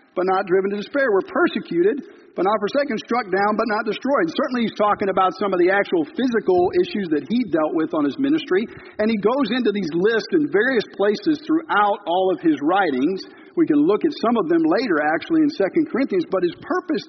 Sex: male